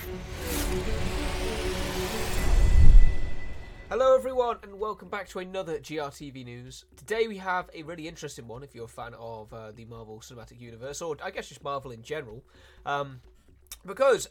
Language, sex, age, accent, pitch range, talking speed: Italian, male, 20-39, British, 105-155 Hz, 145 wpm